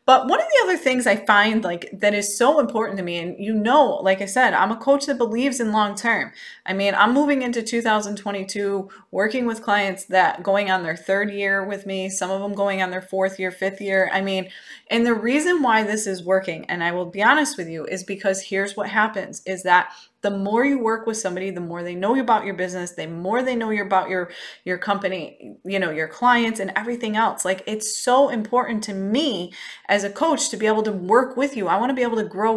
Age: 20-39